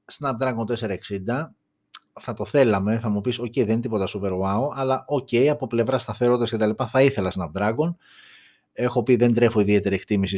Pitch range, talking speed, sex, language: 105-135 Hz, 180 wpm, male, Greek